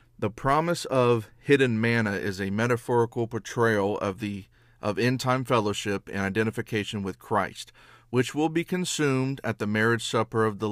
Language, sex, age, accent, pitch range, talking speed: English, male, 40-59, American, 105-120 Hz, 160 wpm